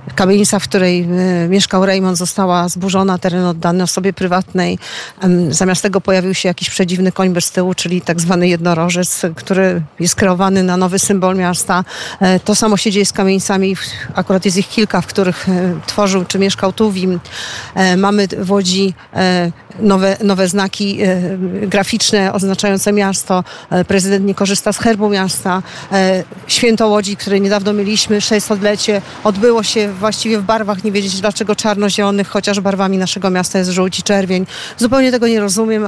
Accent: native